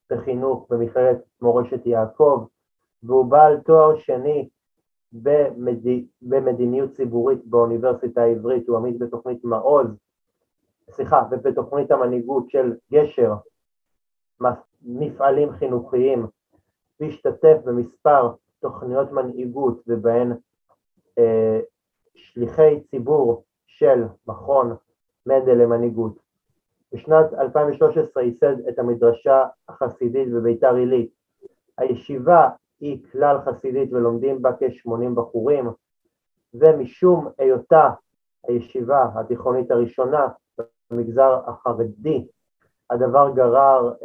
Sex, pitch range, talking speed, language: male, 120-145 Hz, 85 wpm, Hebrew